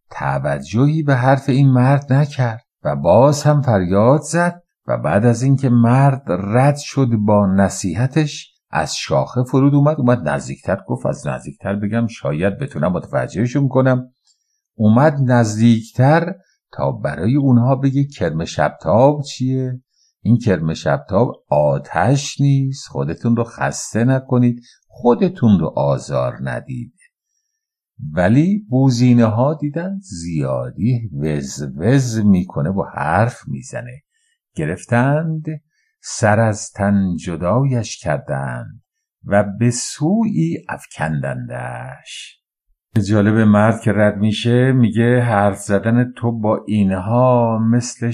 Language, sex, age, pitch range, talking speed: English, male, 50-69, 100-140 Hz, 115 wpm